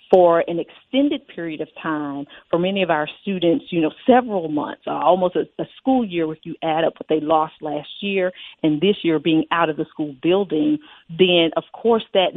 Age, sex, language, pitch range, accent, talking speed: 40-59, female, English, 160-195 Hz, American, 210 wpm